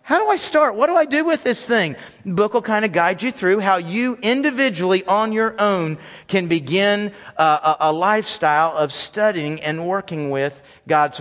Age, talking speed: 40-59, 195 wpm